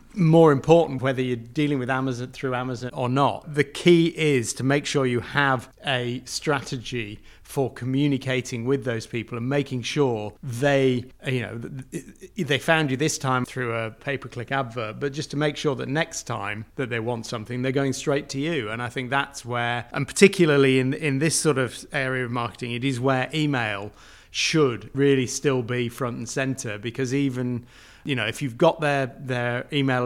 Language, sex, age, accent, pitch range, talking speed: English, male, 30-49, British, 120-140 Hz, 190 wpm